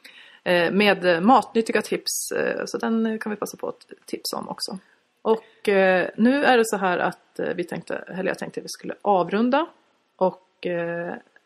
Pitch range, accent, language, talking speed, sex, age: 180-240 Hz, native, Swedish, 150 wpm, female, 30-49